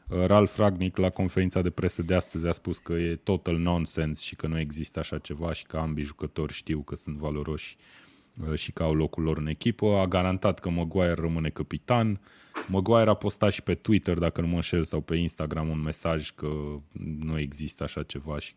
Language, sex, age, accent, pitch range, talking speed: Romanian, male, 20-39, native, 80-95 Hz, 200 wpm